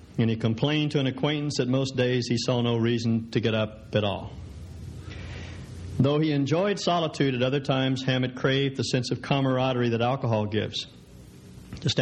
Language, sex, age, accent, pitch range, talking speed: English, male, 50-69, American, 110-140 Hz, 175 wpm